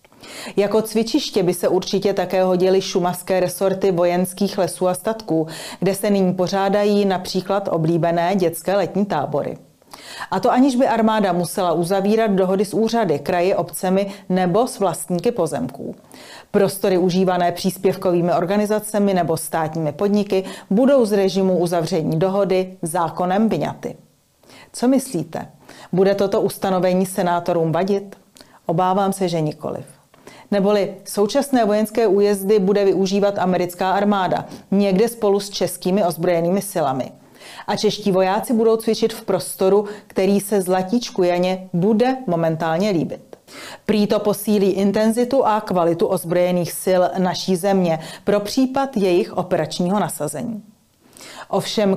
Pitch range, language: 180-205 Hz, Czech